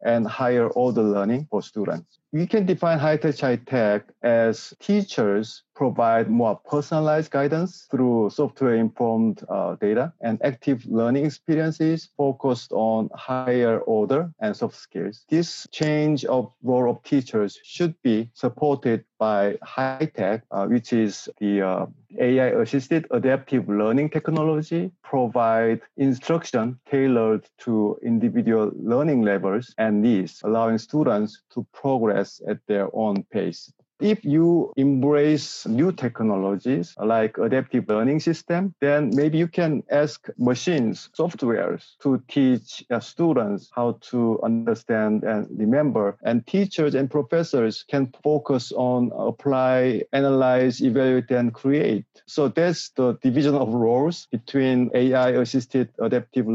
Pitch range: 115-150 Hz